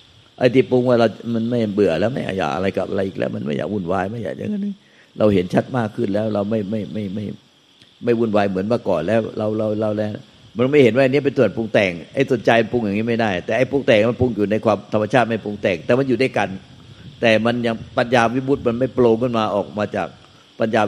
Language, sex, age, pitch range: Thai, male, 60-79, 105-120 Hz